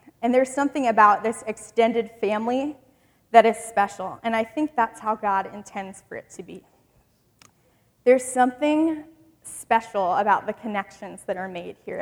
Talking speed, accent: 155 wpm, American